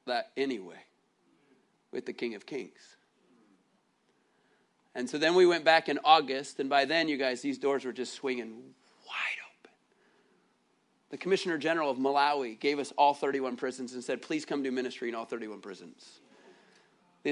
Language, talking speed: English, 165 wpm